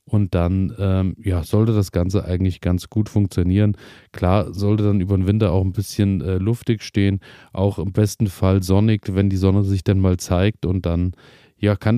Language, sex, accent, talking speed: German, male, German, 195 wpm